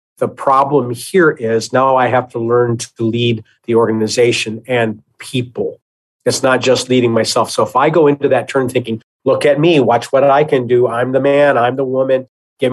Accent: American